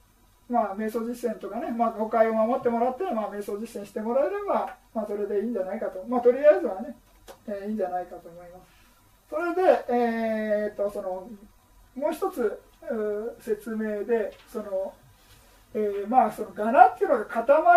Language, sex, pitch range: Japanese, male, 220-280 Hz